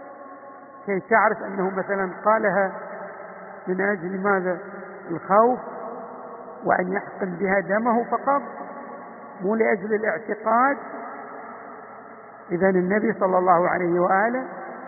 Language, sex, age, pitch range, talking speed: Arabic, male, 50-69, 195-255 Hz, 95 wpm